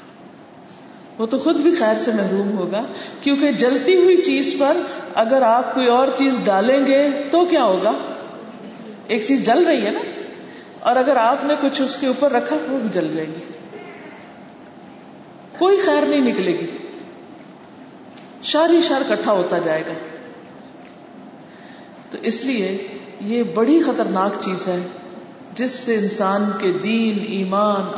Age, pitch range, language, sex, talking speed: 50-69, 215-295 Hz, Urdu, female, 150 wpm